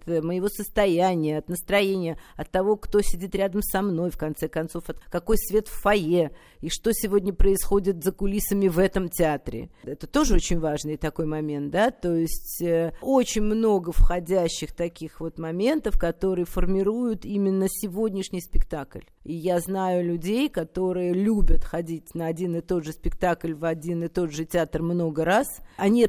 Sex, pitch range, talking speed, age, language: female, 170-215 Hz, 165 wpm, 50-69, Russian